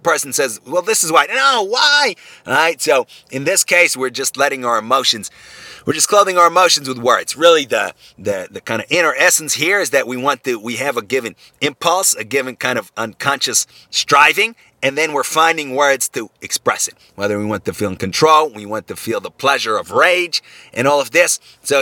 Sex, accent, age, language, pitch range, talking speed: male, American, 30-49, English, 120-175 Hz, 215 wpm